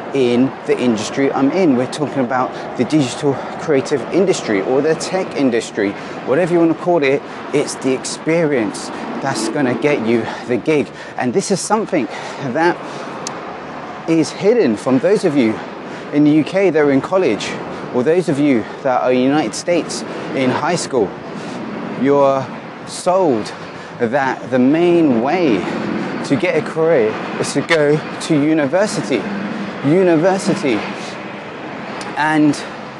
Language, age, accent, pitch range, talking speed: English, 30-49, British, 125-165 Hz, 140 wpm